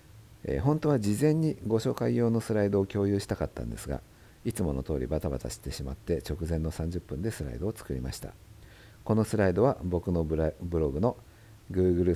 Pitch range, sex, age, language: 80-110 Hz, male, 50-69, Japanese